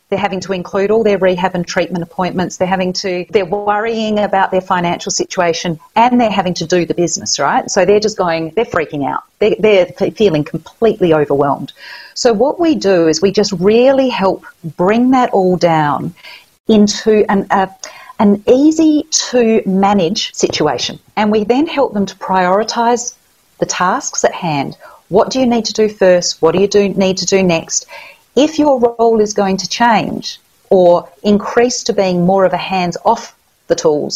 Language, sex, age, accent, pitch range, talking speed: English, female, 40-59, Australian, 165-215 Hz, 175 wpm